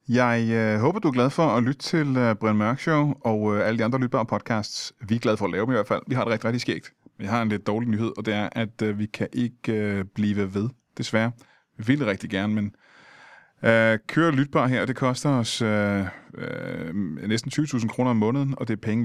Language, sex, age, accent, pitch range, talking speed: Danish, male, 30-49, native, 105-130 Hz, 235 wpm